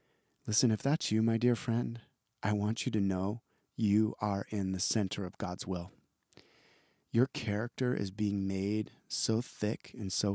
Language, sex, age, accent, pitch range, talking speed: English, male, 30-49, American, 105-120 Hz, 170 wpm